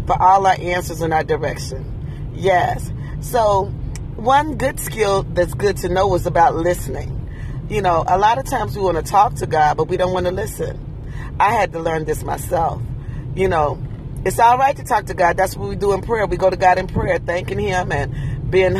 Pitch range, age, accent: 135-185 Hz, 40-59, American